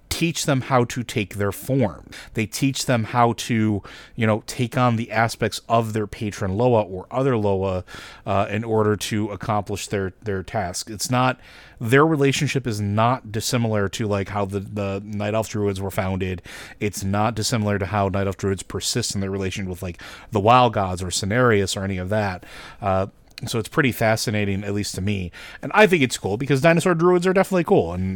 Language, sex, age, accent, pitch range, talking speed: English, male, 30-49, American, 100-125 Hz, 200 wpm